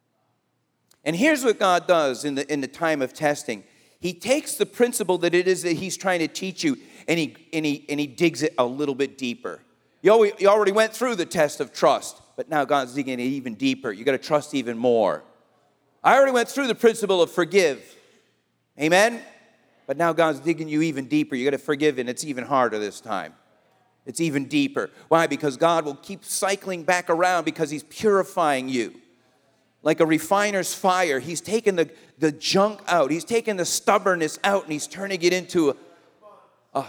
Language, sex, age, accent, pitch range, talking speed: English, male, 40-59, American, 150-195 Hz, 190 wpm